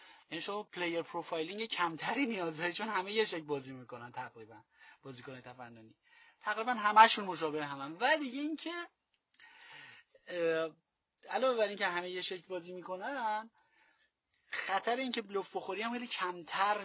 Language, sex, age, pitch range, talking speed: Persian, male, 30-49, 160-225 Hz, 125 wpm